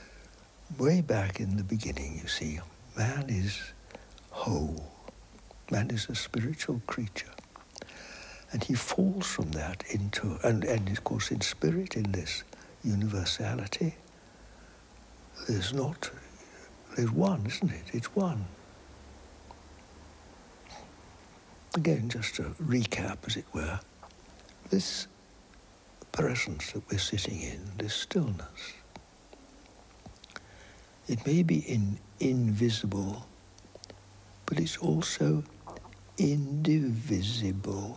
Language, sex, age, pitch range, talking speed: English, male, 60-79, 90-115 Hz, 95 wpm